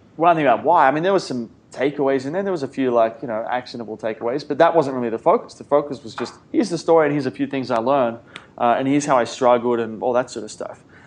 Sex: male